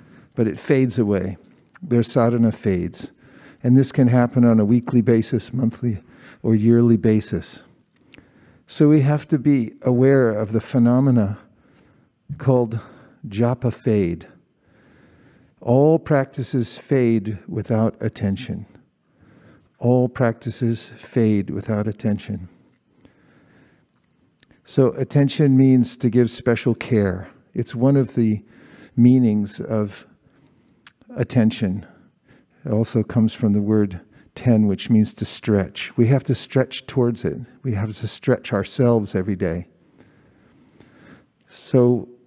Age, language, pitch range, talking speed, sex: 50-69, English, 110-130 Hz, 115 wpm, male